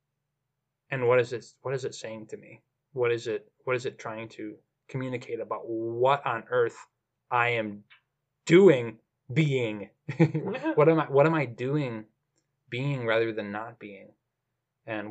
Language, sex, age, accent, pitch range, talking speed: English, male, 20-39, American, 110-150 Hz, 160 wpm